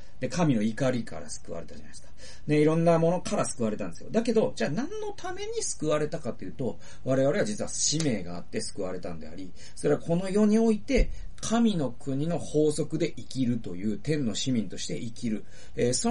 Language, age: Japanese, 40-59